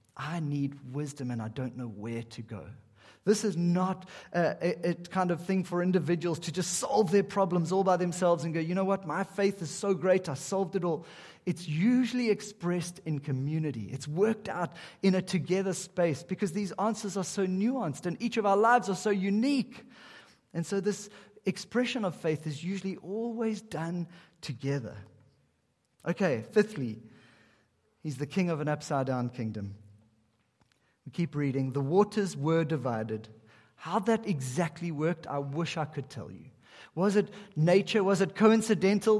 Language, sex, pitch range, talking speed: English, male, 150-195 Hz, 170 wpm